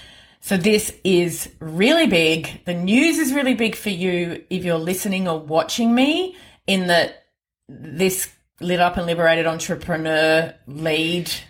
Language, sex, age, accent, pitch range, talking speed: English, female, 30-49, Australian, 160-195 Hz, 140 wpm